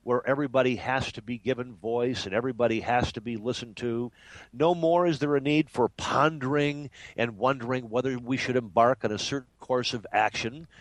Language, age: English, 50-69